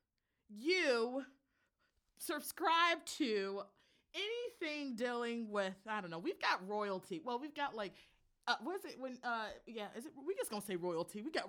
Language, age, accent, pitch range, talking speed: English, 30-49, American, 235-365 Hz, 165 wpm